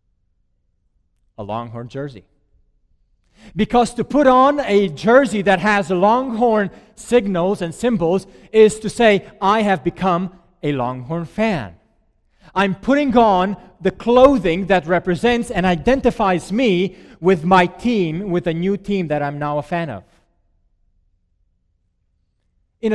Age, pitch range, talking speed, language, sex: 40-59, 165-230 Hz, 130 wpm, English, male